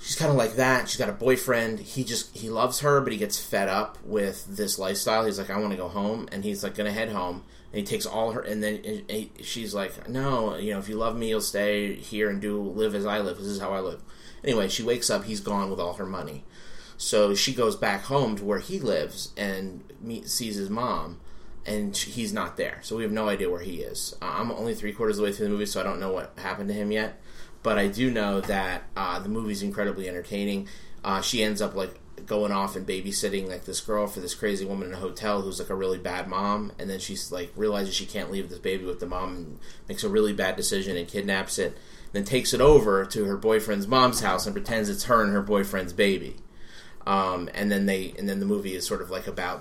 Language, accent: English, American